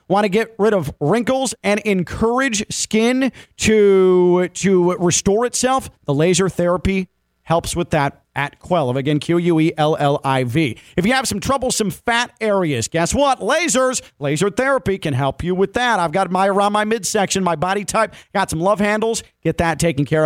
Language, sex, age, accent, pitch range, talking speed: English, male, 40-59, American, 160-230 Hz, 170 wpm